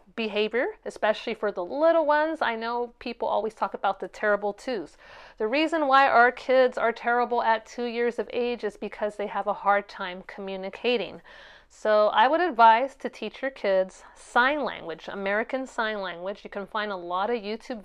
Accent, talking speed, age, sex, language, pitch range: American, 185 wpm, 30-49, female, English, 190-240 Hz